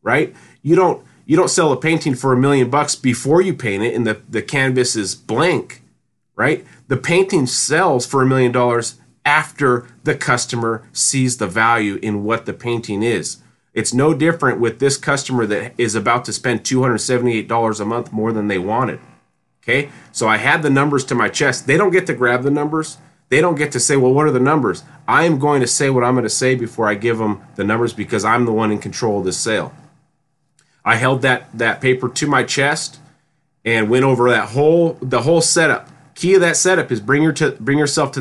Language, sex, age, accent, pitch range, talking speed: English, male, 30-49, American, 115-145 Hz, 215 wpm